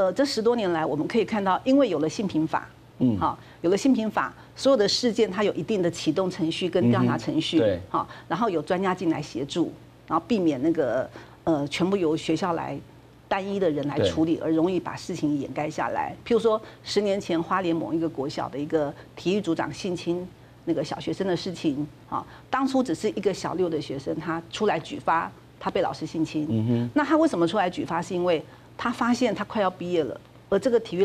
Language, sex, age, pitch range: Chinese, female, 50-69, 155-215 Hz